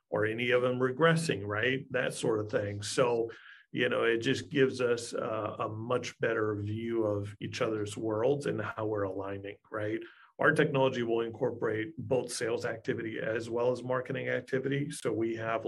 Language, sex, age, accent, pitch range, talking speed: English, male, 40-59, American, 110-130 Hz, 175 wpm